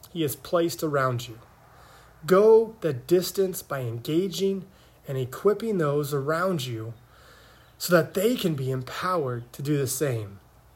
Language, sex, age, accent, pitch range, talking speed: English, male, 20-39, American, 125-170 Hz, 140 wpm